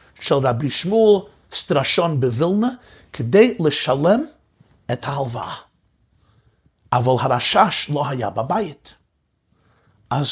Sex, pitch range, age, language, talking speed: male, 130-190 Hz, 50-69, Hebrew, 85 wpm